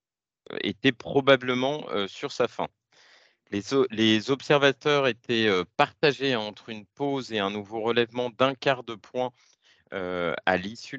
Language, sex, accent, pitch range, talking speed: French, male, French, 105-130 Hz, 140 wpm